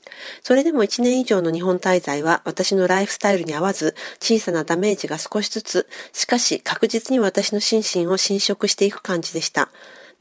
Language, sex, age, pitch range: Japanese, female, 40-59, 180-220 Hz